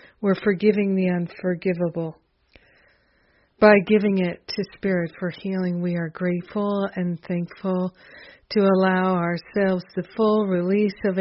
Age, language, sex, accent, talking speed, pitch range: 50-69, English, female, American, 125 wpm, 180-200 Hz